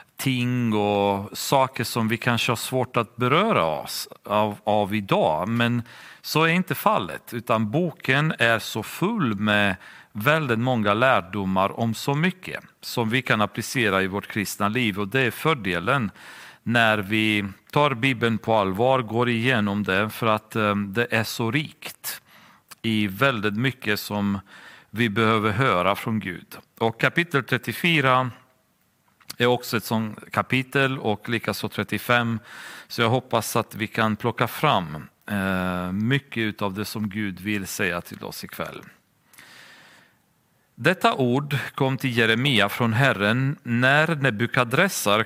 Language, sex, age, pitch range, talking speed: Swedish, male, 40-59, 105-130 Hz, 140 wpm